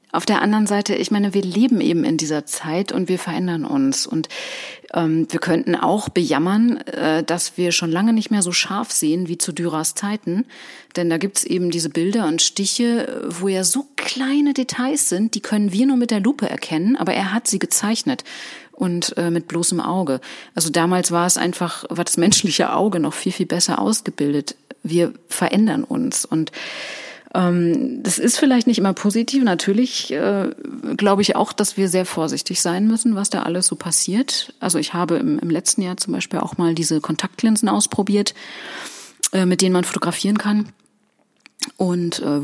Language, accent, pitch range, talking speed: German, German, 165-225 Hz, 185 wpm